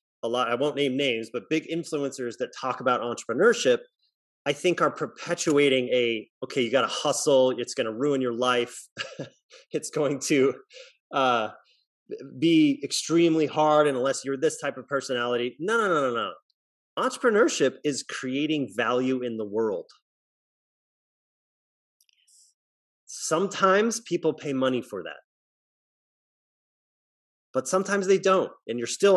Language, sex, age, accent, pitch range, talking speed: English, male, 30-49, American, 120-175 Hz, 145 wpm